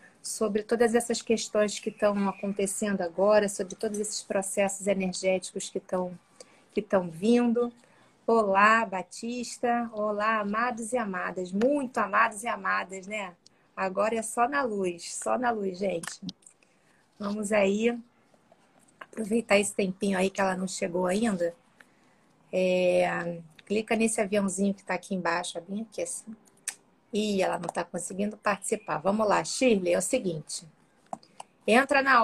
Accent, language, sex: Brazilian, Portuguese, female